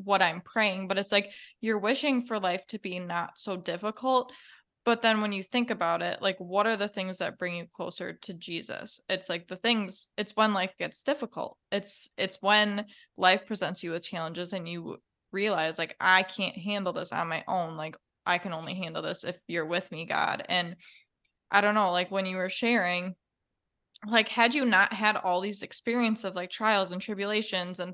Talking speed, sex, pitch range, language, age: 205 wpm, female, 185-215 Hz, English, 20-39